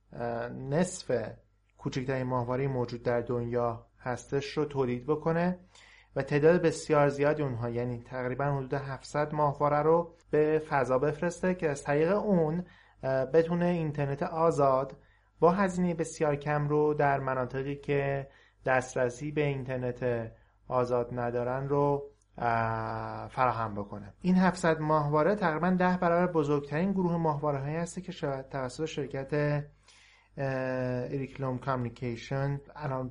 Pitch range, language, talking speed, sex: 125-155 Hz, Persian, 115 wpm, male